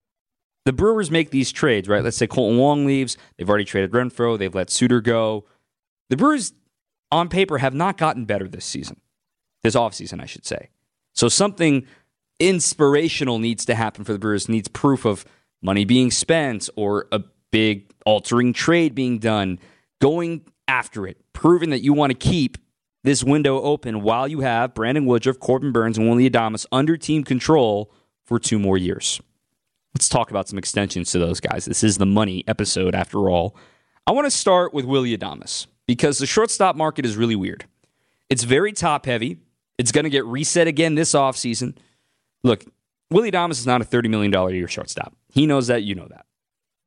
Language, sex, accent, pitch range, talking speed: English, male, American, 105-145 Hz, 180 wpm